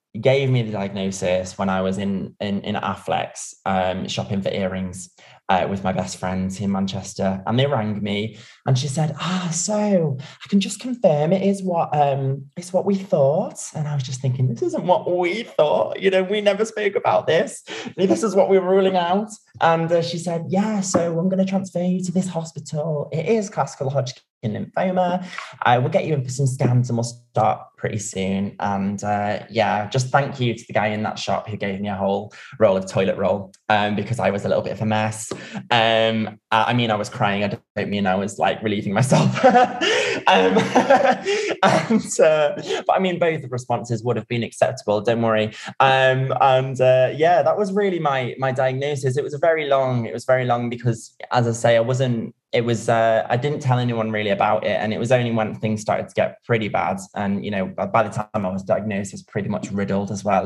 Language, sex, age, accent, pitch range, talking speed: English, male, 20-39, British, 105-165 Hz, 220 wpm